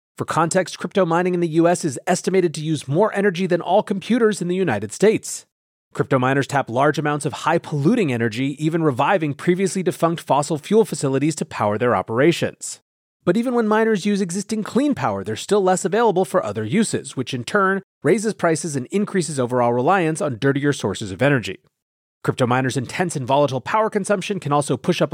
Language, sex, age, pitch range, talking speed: English, male, 30-49, 135-190 Hz, 190 wpm